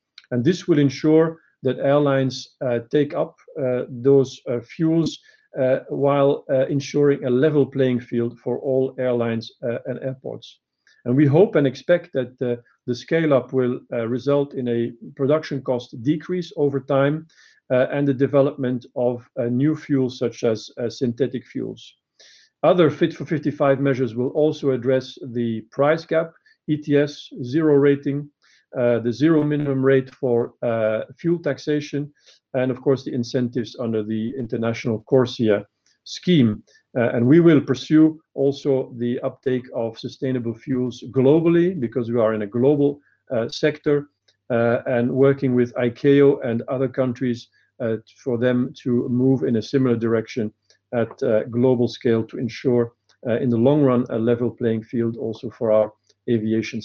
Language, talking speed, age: English, 155 wpm, 50-69